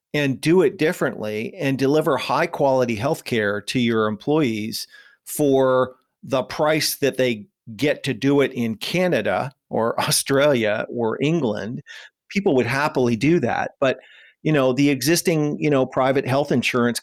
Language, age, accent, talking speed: English, 40-59, American, 150 wpm